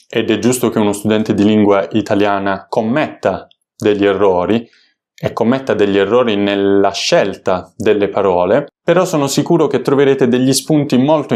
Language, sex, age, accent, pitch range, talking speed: Italian, male, 20-39, native, 105-130 Hz, 150 wpm